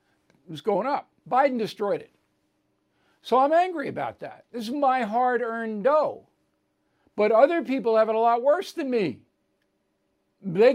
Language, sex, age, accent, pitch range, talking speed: English, male, 60-79, American, 175-235 Hz, 160 wpm